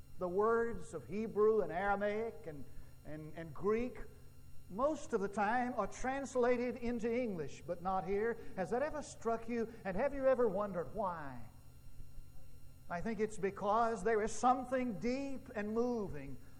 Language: English